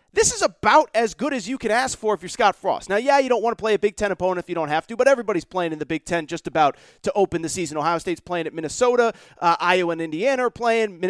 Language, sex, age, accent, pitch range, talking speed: English, male, 30-49, American, 200-275 Hz, 290 wpm